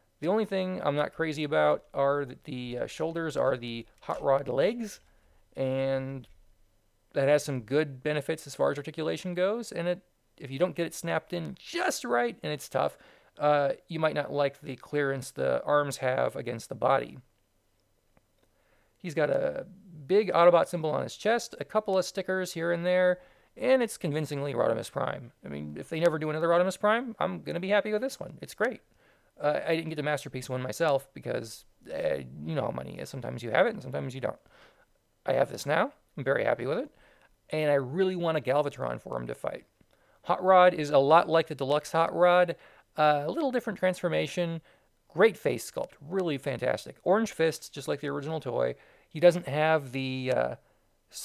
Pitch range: 135-180 Hz